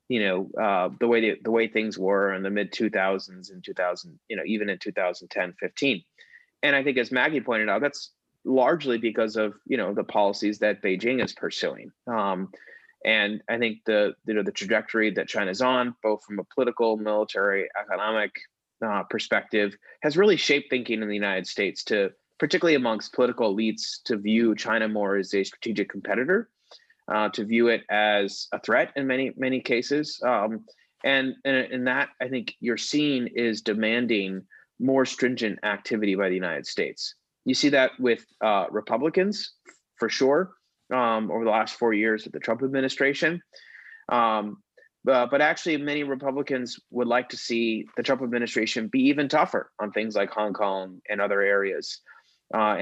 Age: 30-49